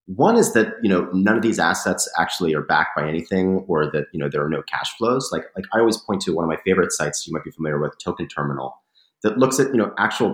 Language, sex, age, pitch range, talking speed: English, male, 30-49, 75-95 Hz, 275 wpm